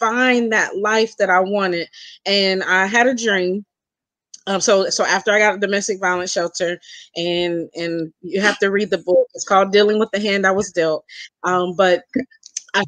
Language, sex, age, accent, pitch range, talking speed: English, female, 20-39, American, 185-230 Hz, 190 wpm